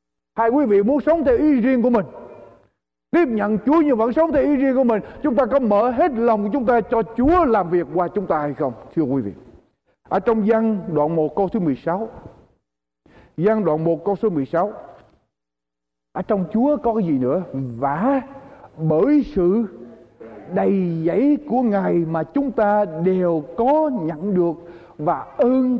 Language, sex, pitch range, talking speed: Polish, male, 185-265 Hz, 180 wpm